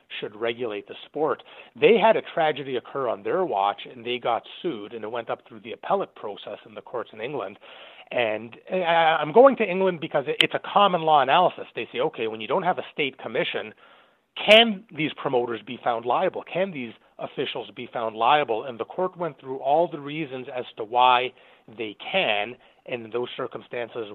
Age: 30-49